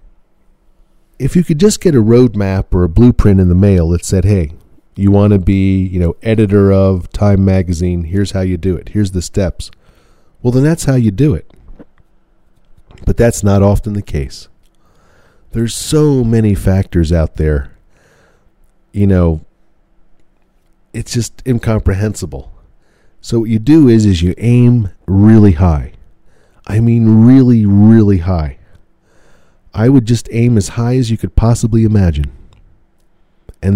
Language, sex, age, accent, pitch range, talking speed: English, male, 40-59, American, 90-115 Hz, 150 wpm